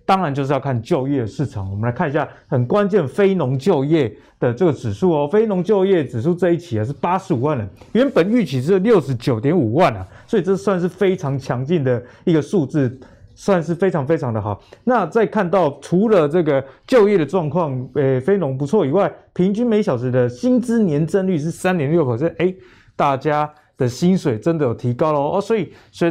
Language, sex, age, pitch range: Chinese, male, 20-39, 130-175 Hz